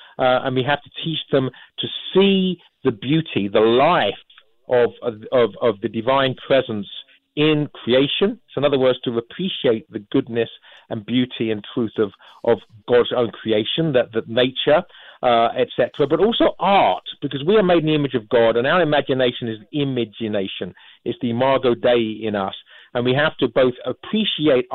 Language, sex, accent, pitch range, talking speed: English, male, British, 120-150 Hz, 170 wpm